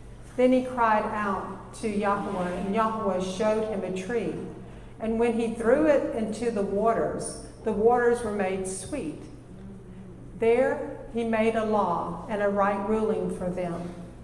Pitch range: 200-245 Hz